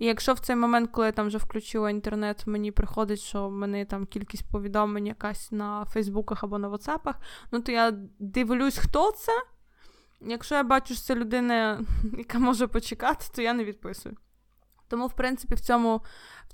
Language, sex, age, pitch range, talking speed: Ukrainian, female, 20-39, 210-240 Hz, 180 wpm